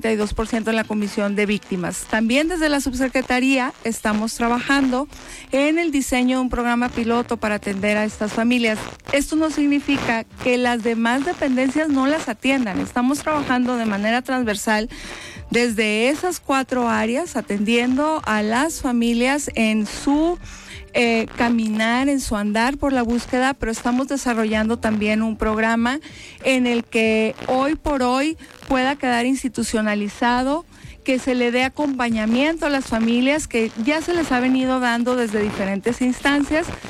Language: Spanish